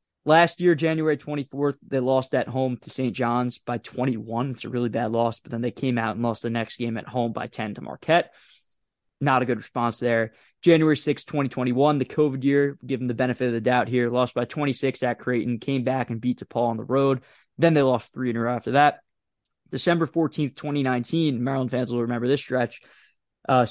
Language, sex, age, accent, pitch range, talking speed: English, male, 20-39, American, 120-140 Hz, 215 wpm